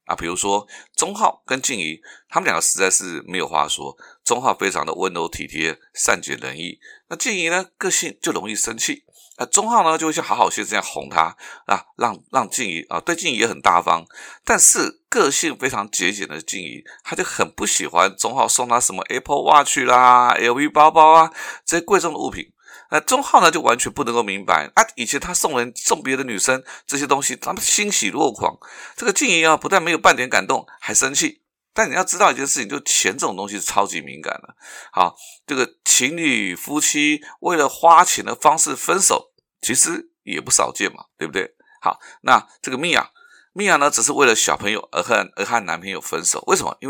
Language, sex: Chinese, male